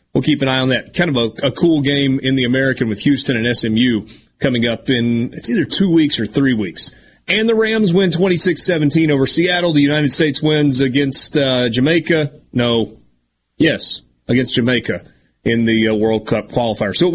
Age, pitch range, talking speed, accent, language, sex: 30-49, 125-180 Hz, 195 wpm, American, English, male